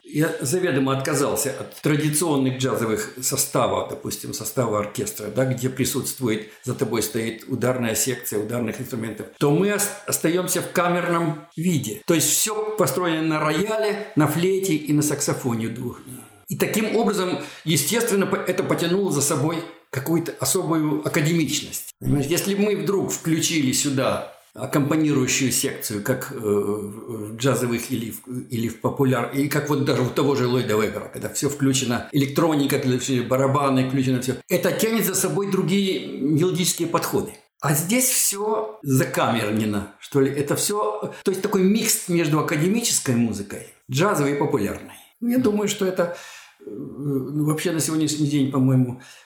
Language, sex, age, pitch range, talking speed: Ukrainian, male, 60-79, 130-175 Hz, 140 wpm